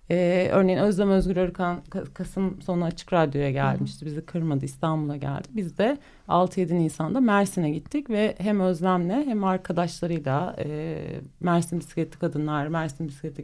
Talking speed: 140 wpm